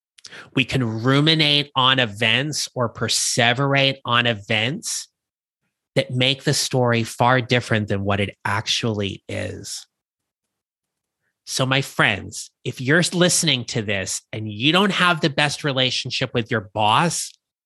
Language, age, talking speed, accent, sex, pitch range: English, 30-49, 130 wpm, American, male, 115-150 Hz